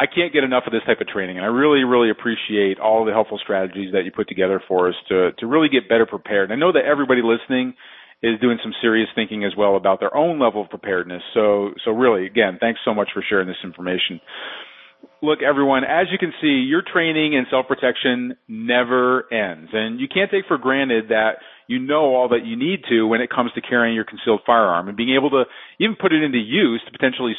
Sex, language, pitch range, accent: male, English, 110-140 Hz, American